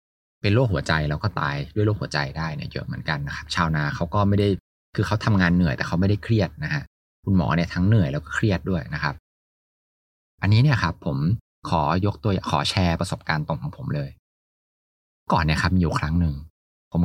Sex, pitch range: male, 80-115 Hz